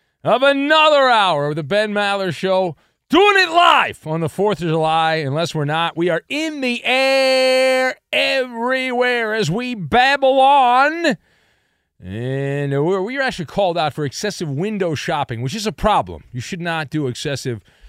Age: 40-59